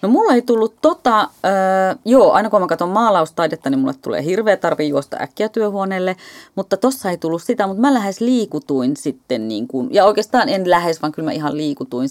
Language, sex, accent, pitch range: Finnish, female, native, 150-215 Hz